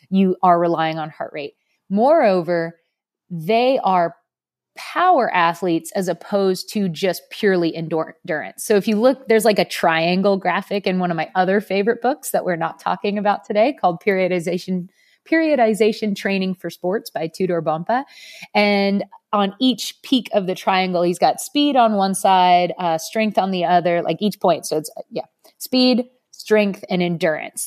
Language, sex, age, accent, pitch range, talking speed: English, female, 30-49, American, 180-210 Hz, 165 wpm